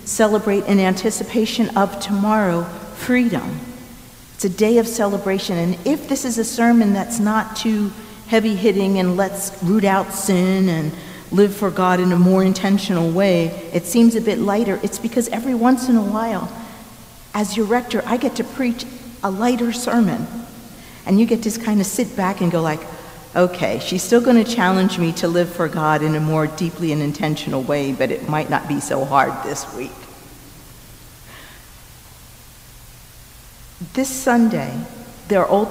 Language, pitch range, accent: English, 160-215 Hz, American